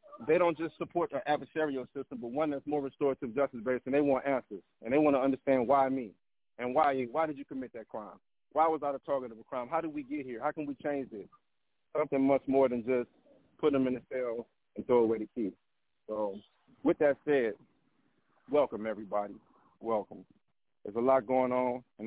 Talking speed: 215 wpm